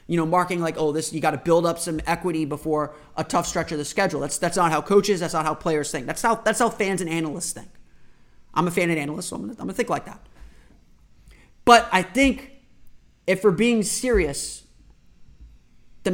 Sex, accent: male, American